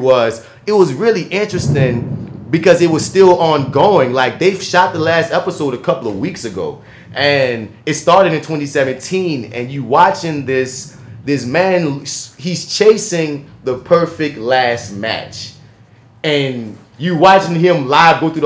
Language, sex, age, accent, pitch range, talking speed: English, male, 30-49, American, 130-175 Hz, 145 wpm